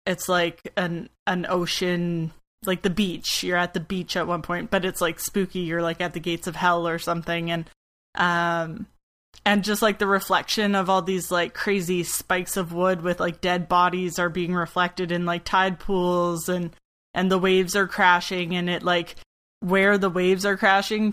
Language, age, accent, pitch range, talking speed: English, 20-39, American, 175-195 Hz, 195 wpm